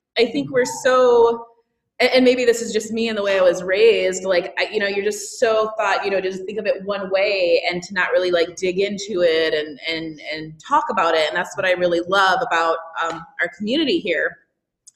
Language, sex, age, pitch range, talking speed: English, female, 20-39, 175-230 Hz, 235 wpm